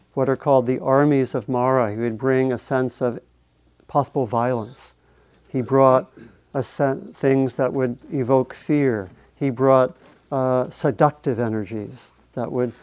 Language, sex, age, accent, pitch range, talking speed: English, male, 50-69, American, 115-140 Hz, 135 wpm